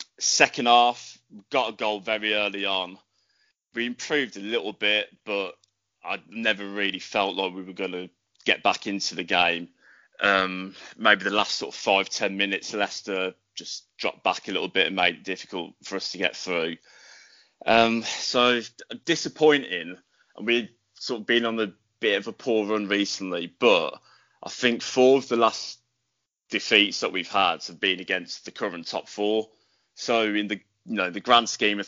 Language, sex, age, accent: English, male, 20-39, British